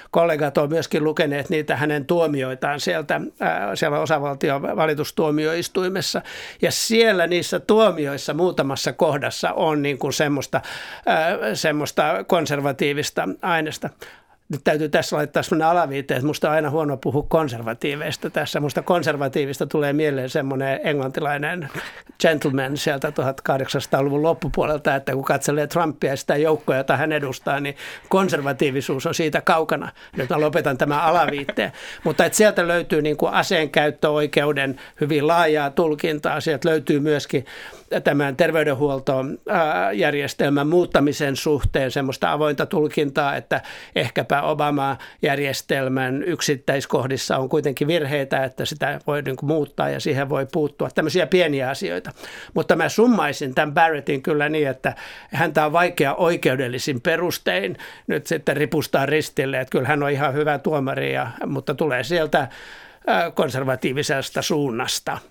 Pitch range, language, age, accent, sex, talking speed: 140-160 Hz, Finnish, 60-79, native, male, 125 wpm